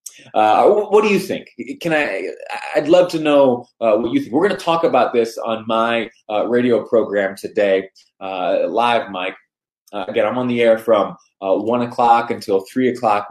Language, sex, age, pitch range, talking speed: English, male, 20-39, 100-140 Hz, 200 wpm